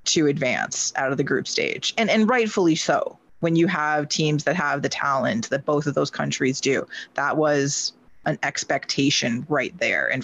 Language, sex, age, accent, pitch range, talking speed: English, female, 20-39, American, 150-200 Hz, 190 wpm